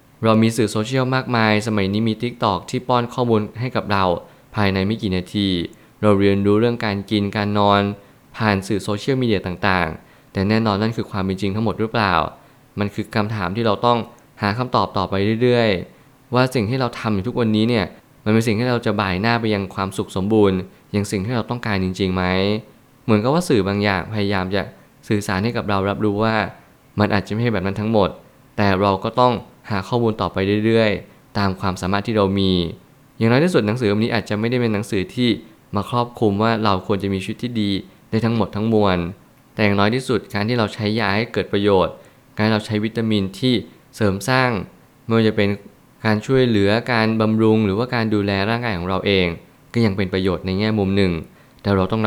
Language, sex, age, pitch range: Thai, male, 20-39, 100-115 Hz